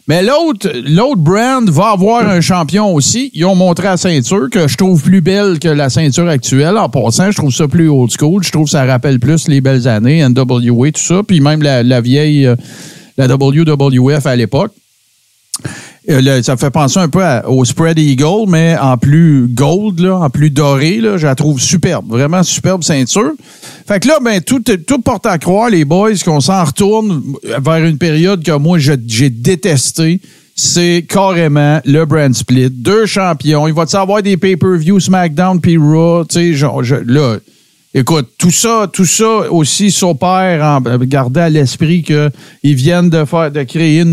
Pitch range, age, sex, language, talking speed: 145-190 Hz, 50-69, male, French, 185 wpm